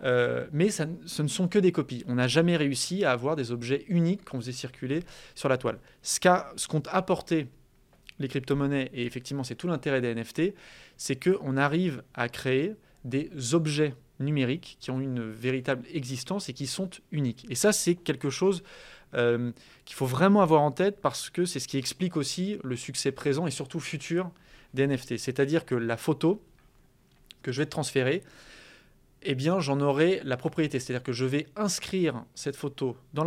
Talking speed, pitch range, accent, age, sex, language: 190 wpm, 130-170 Hz, French, 20-39, male, French